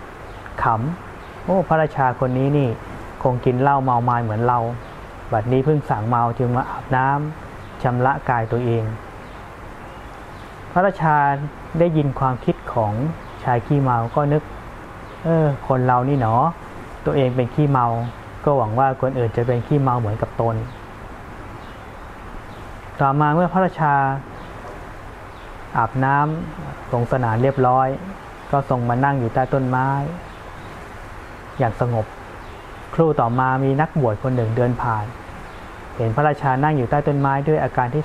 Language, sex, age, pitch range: Thai, male, 20-39, 115-140 Hz